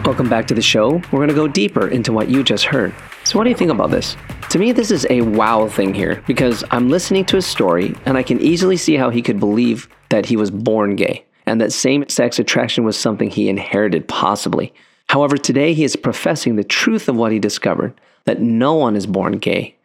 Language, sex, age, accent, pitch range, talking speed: English, male, 30-49, American, 110-140 Hz, 235 wpm